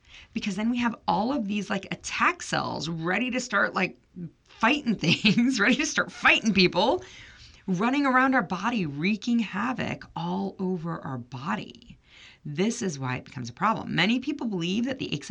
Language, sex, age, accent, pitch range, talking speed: English, female, 30-49, American, 135-220 Hz, 175 wpm